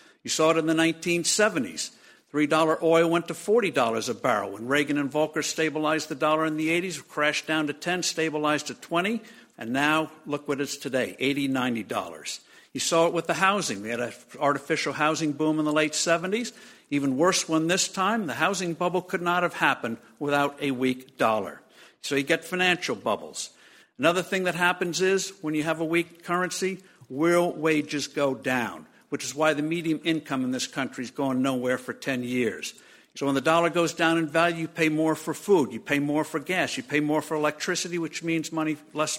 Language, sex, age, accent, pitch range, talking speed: English, male, 60-79, American, 140-175 Hz, 205 wpm